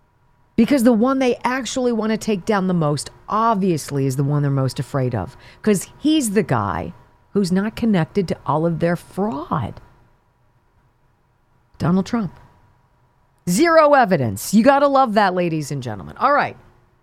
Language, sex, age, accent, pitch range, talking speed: English, female, 40-59, American, 130-215 Hz, 150 wpm